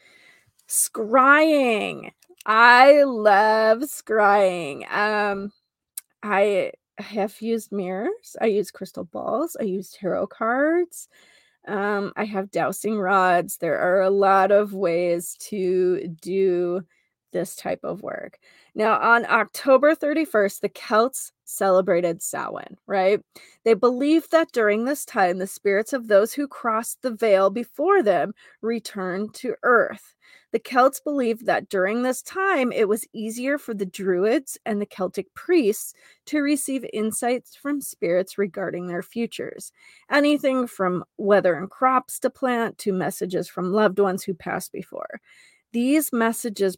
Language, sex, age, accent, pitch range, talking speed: English, female, 20-39, American, 190-255 Hz, 135 wpm